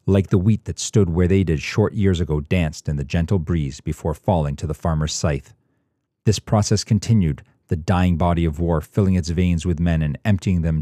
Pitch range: 85-105 Hz